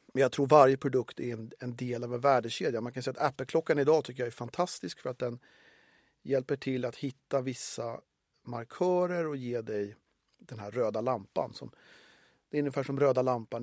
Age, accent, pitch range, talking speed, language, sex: 40-59, native, 120-140 Hz, 200 wpm, Swedish, male